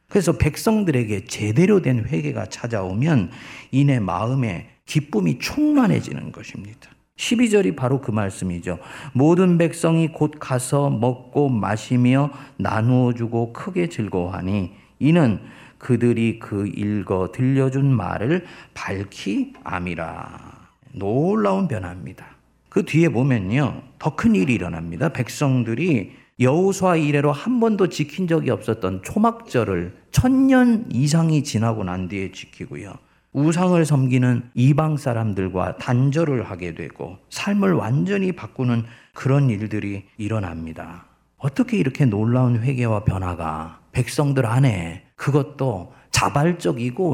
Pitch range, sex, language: 105-155 Hz, male, Korean